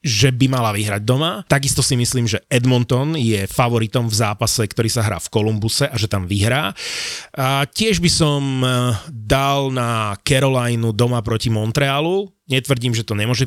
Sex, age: male, 30-49